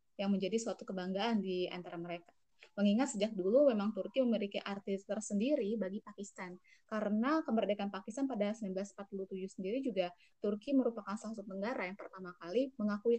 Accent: native